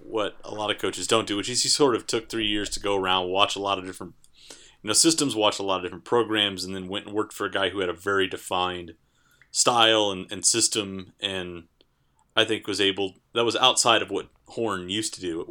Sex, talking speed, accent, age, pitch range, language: male, 250 wpm, American, 30-49, 95-110 Hz, English